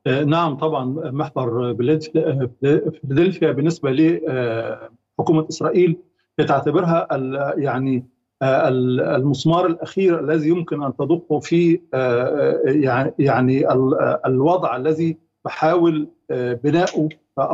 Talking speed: 75 wpm